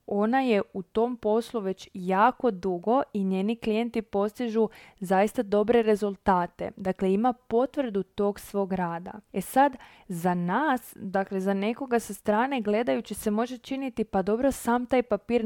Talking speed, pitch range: 150 wpm, 195-235 Hz